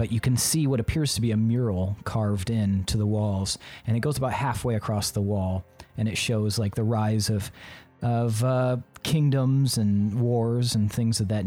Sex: male